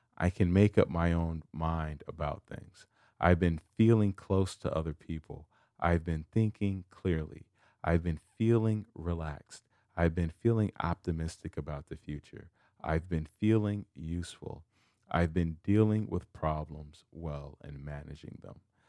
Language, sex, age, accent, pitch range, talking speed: English, male, 40-59, American, 80-105 Hz, 140 wpm